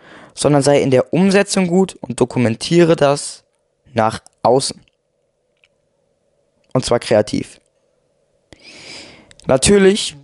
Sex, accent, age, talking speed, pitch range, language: male, German, 20-39, 90 wpm, 130-195 Hz, German